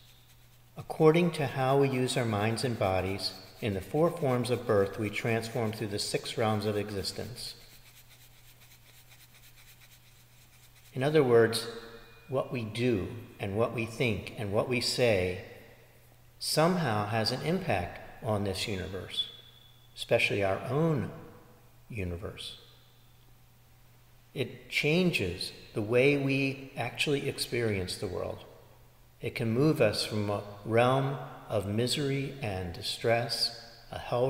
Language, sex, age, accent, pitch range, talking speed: English, male, 50-69, American, 105-125 Hz, 120 wpm